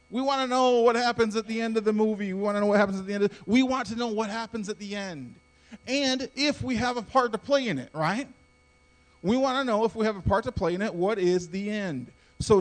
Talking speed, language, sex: 280 wpm, English, male